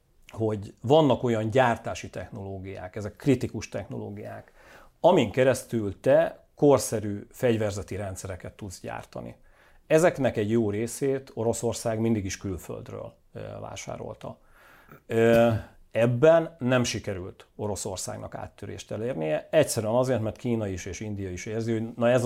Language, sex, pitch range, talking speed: Hungarian, male, 100-120 Hz, 115 wpm